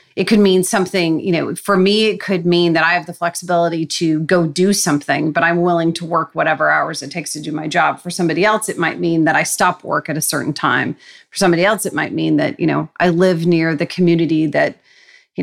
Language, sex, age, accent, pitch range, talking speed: English, female, 30-49, American, 170-210 Hz, 245 wpm